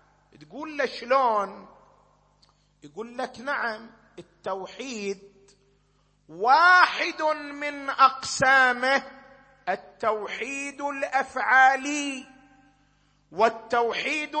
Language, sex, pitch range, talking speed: Arabic, male, 245-310 Hz, 55 wpm